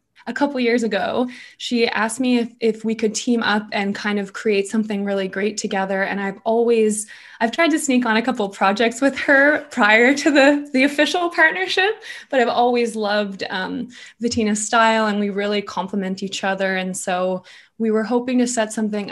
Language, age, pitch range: English, 20-39, 205-240 Hz